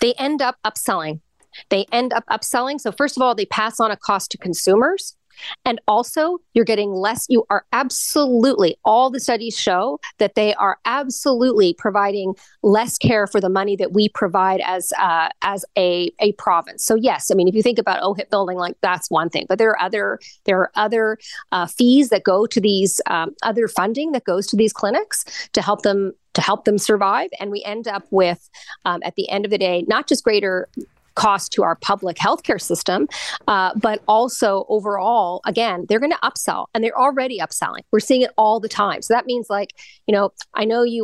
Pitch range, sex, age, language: 200-245 Hz, female, 40-59, English